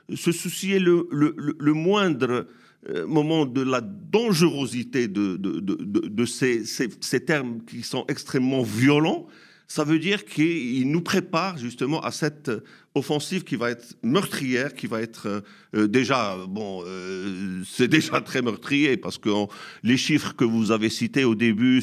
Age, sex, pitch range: 50-69, male, 115-155 Hz